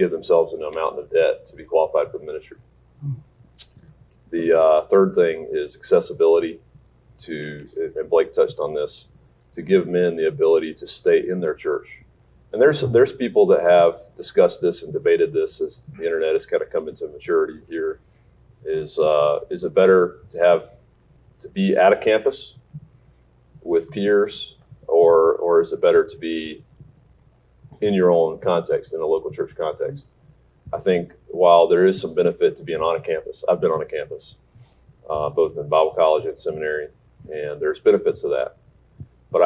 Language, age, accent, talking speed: English, 30-49, American, 175 wpm